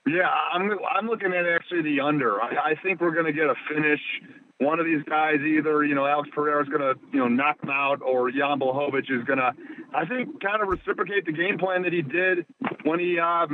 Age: 40-59